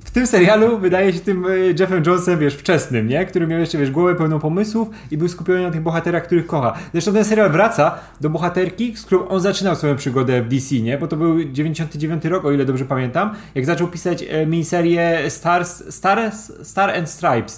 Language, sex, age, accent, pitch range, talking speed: Polish, male, 30-49, native, 140-185 Hz, 200 wpm